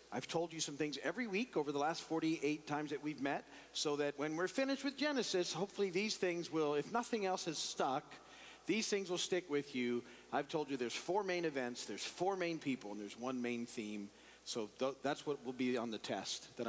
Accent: American